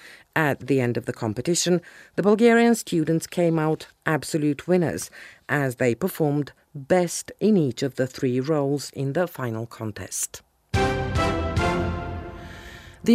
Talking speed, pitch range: 130 wpm, 130-175 Hz